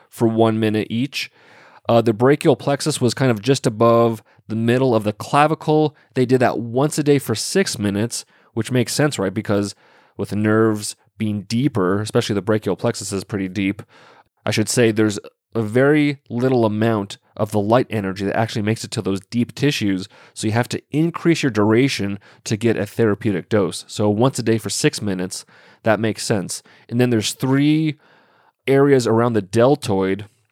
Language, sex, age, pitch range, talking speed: English, male, 30-49, 105-135 Hz, 185 wpm